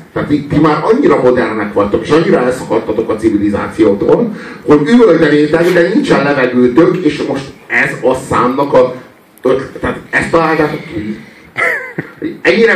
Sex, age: male, 50-69